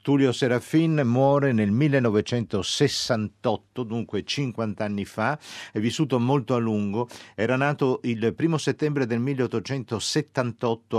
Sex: male